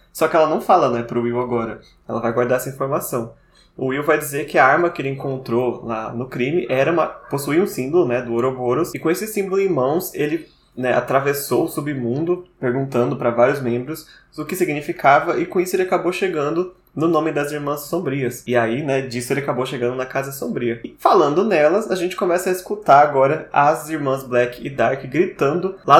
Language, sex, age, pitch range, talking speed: Portuguese, male, 20-39, 125-160 Hz, 210 wpm